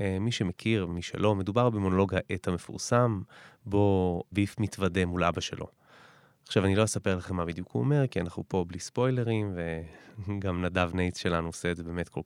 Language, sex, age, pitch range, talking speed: Hebrew, male, 20-39, 90-120 Hz, 180 wpm